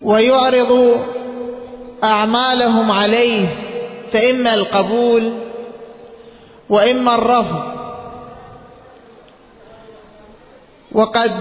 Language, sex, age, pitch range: Arabic, male, 40-59, 215-245 Hz